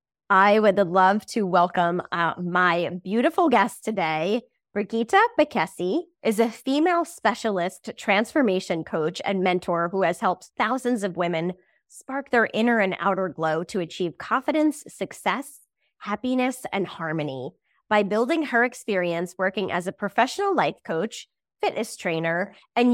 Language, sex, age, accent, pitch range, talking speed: English, female, 20-39, American, 180-250 Hz, 135 wpm